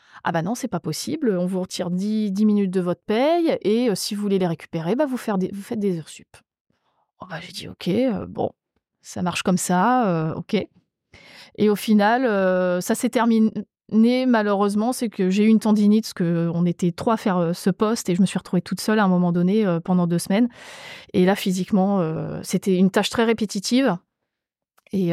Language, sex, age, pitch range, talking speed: French, female, 20-39, 185-225 Hz, 230 wpm